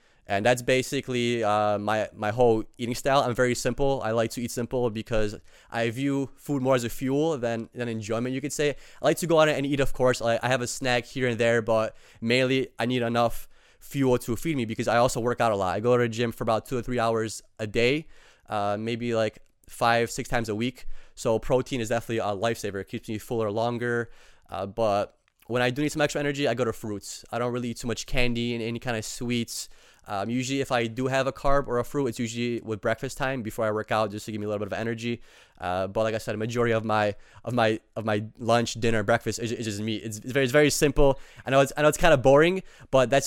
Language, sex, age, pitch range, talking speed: English, male, 20-39, 110-130 Hz, 260 wpm